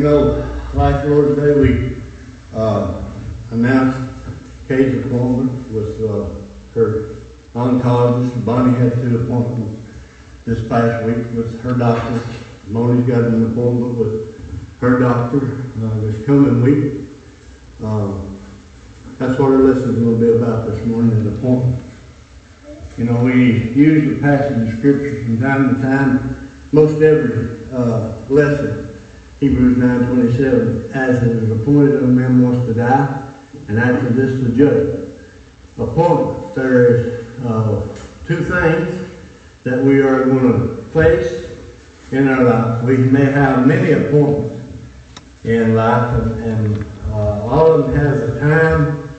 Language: English